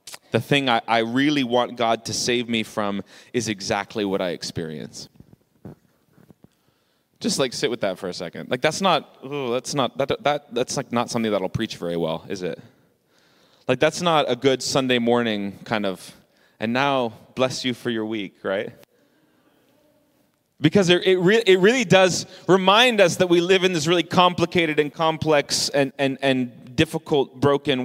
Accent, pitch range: American, 130-195 Hz